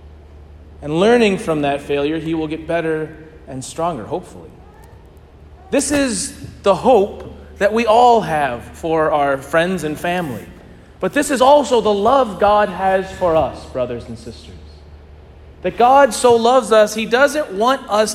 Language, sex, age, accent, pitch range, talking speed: English, male, 40-59, American, 150-230 Hz, 155 wpm